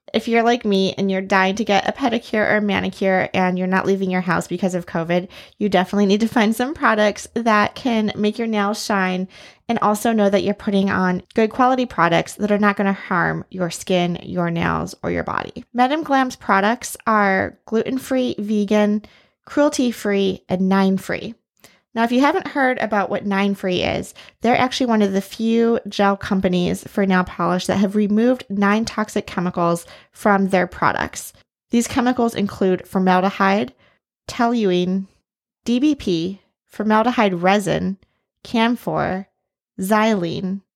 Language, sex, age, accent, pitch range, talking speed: English, female, 20-39, American, 190-230 Hz, 160 wpm